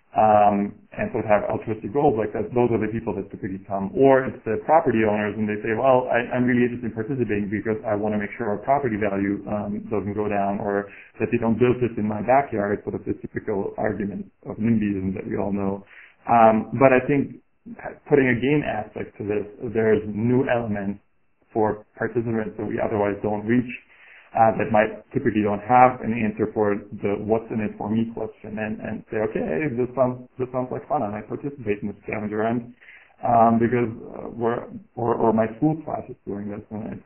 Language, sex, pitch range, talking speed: English, male, 105-115 Hz, 210 wpm